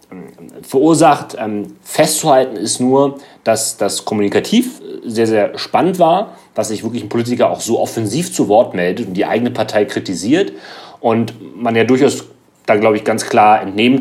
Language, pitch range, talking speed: German, 105-130 Hz, 160 wpm